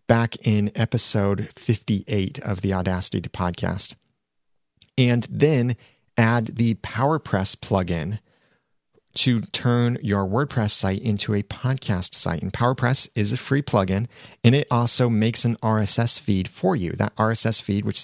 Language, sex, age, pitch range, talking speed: English, male, 30-49, 100-125 Hz, 145 wpm